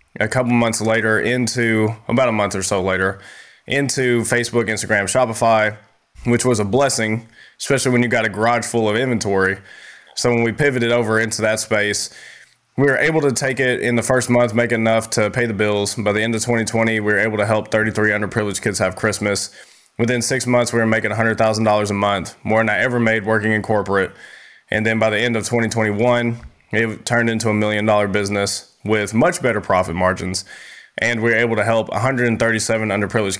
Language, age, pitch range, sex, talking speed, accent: English, 20-39, 105-120 Hz, male, 205 wpm, American